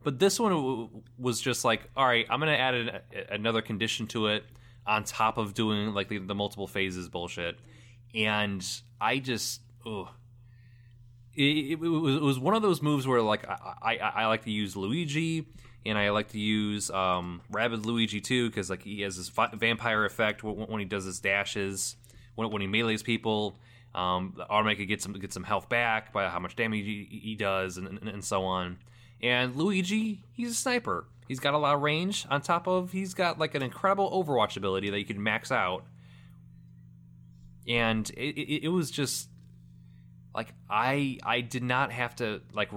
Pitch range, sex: 100-125 Hz, male